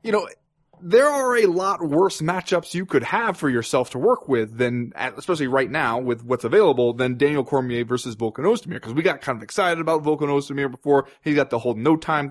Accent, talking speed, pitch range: American, 220 wpm, 125-170 Hz